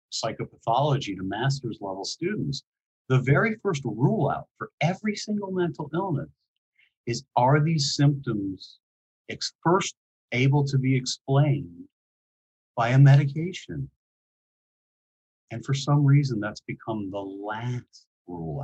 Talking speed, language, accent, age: 115 wpm, English, American, 40-59